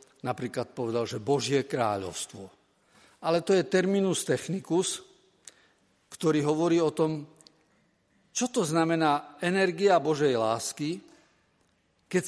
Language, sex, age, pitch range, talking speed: Slovak, male, 50-69, 135-195 Hz, 105 wpm